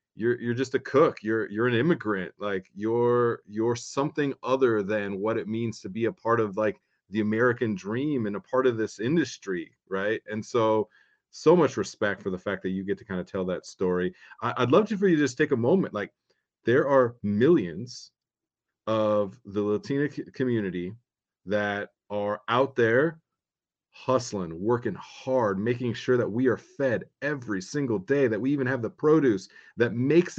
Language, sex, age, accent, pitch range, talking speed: English, male, 30-49, American, 105-130 Hz, 185 wpm